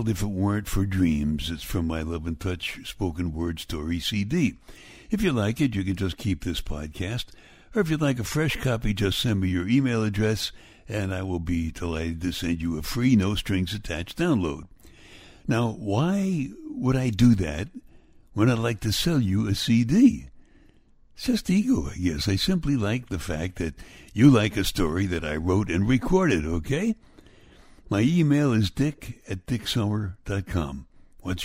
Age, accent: 60-79, American